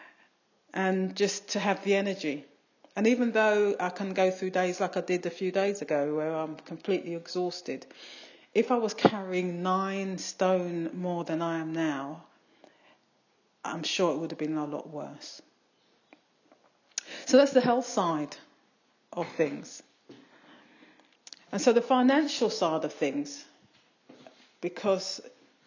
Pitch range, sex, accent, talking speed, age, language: 165-220 Hz, female, British, 140 wpm, 40-59, English